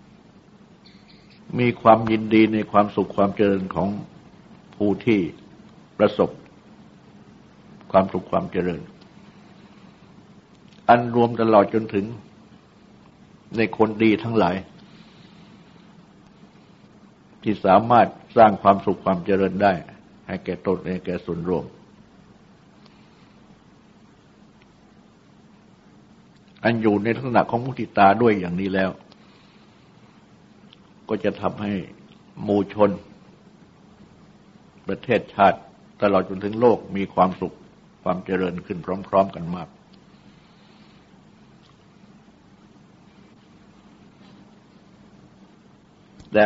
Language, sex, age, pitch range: Thai, male, 60-79, 95-115 Hz